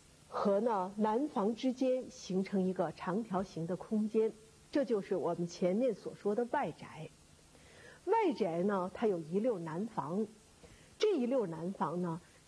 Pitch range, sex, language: 180-255 Hz, female, Chinese